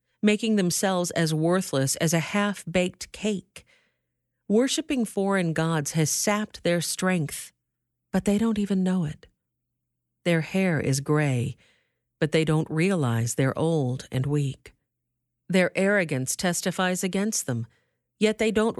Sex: female